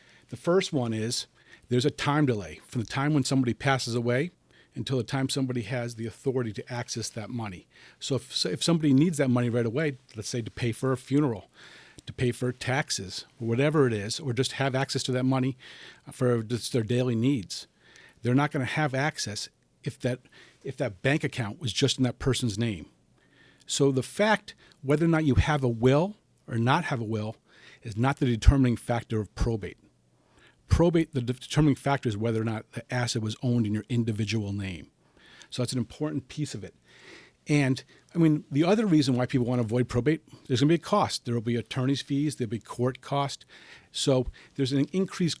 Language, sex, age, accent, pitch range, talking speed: English, male, 50-69, American, 120-145 Hz, 205 wpm